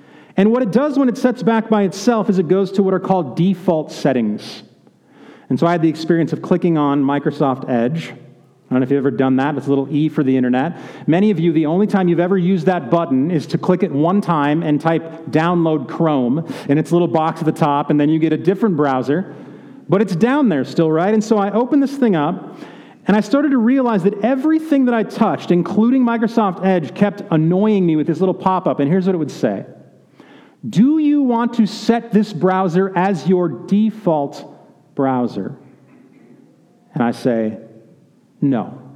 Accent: American